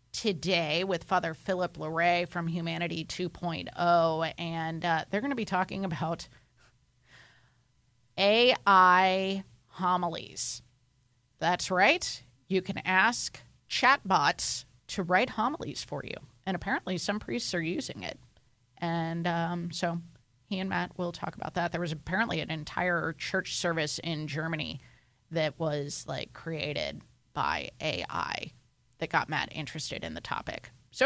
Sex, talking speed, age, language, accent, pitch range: female, 135 wpm, 30-49, English, American, 160-185 Hz